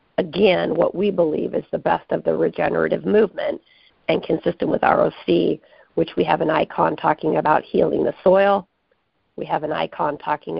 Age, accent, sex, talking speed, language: 40-59, American, female, 170 wpm, English